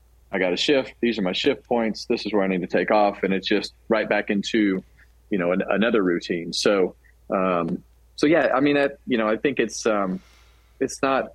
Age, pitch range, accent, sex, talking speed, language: 30-49, 95-110 Hz, American, male, 220 wpm, English